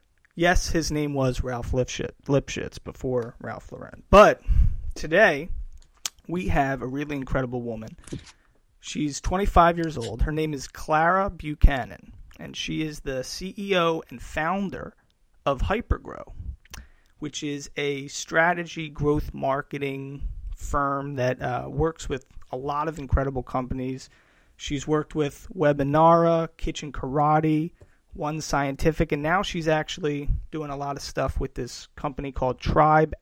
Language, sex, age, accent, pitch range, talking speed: English, male, 30-49, American, 130-160 Hz, 130 wpm